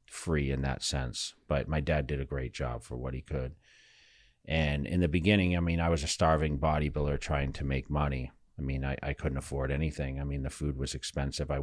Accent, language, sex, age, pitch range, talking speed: American, English, male, 40-59, 70-75 Hz, 225 wpm